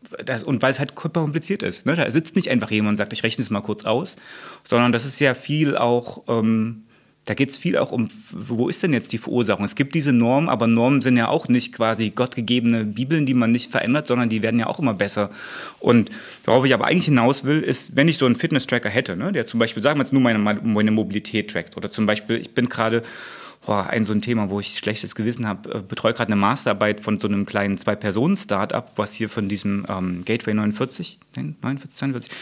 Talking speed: 230 wpm